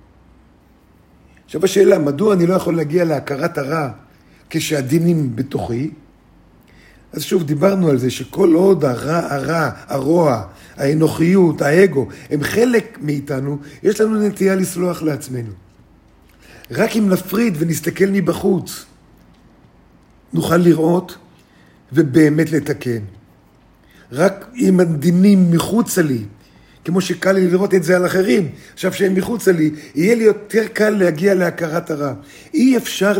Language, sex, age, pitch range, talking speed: Hebrew, male, 50-69, 140-190 Hz, 120 wpm